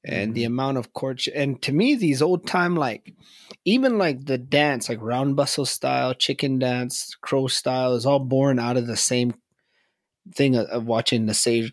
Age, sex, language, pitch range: 20-39, male, English, 115-150 Hz